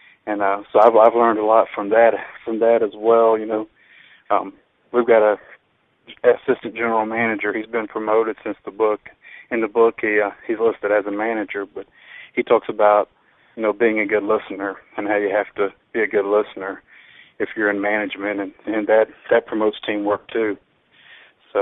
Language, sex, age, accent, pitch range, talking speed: English, male, 40-59, American, 105-115 Hz, 195 wpm